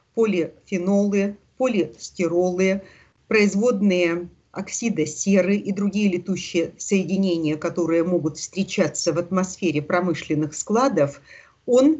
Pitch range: 170-225 Hz